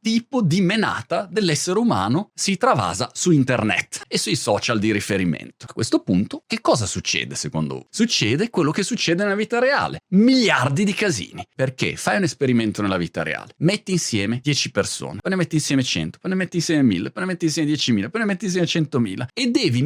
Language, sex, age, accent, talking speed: Italian, male, 30-49, native, 195 wpm